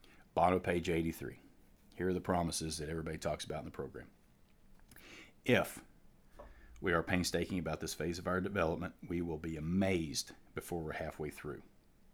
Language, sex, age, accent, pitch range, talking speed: English, male, 40-59, American, 80-100 Hz, 160 wpm